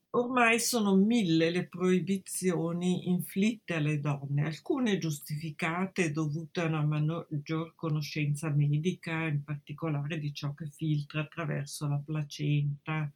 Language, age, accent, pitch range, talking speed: Italian, 50-69, native, 150-180 Hz, 115 wpm